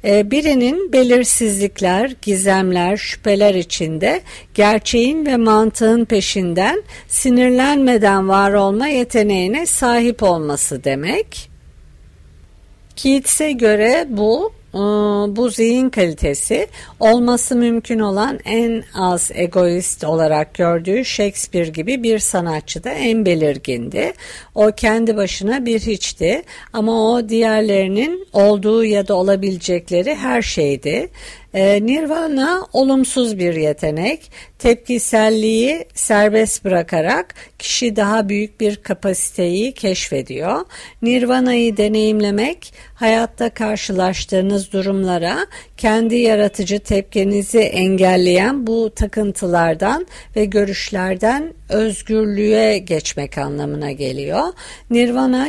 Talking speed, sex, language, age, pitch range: 90 wpm, female, Turkish, 50-69, 185-235 Hz